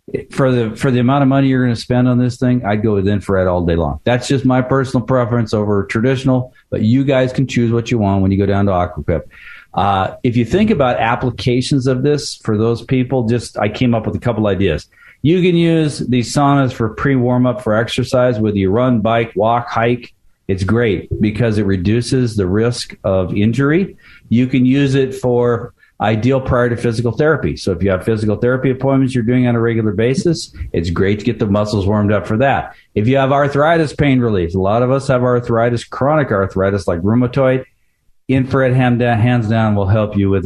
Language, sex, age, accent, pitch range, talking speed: English, male, 50-69, American, 105-135 Hz, 210 wpm